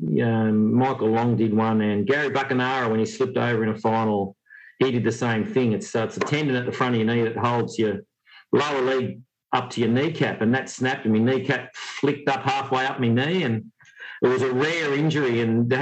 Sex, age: male, 50-69